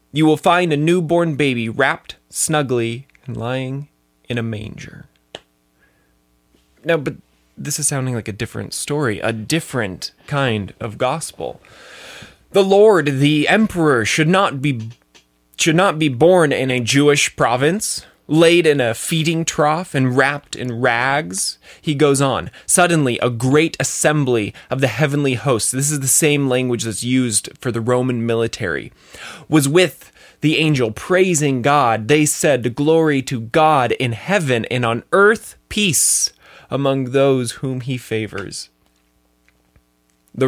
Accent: American